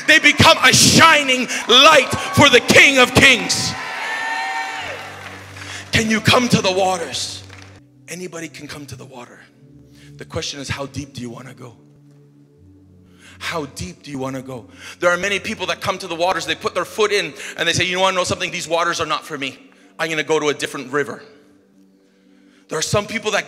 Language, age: English, 30-49